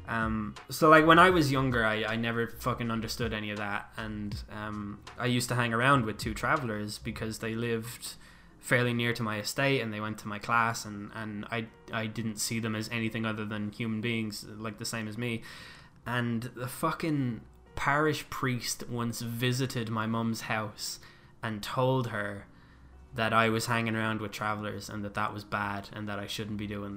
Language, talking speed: English, 195 wpm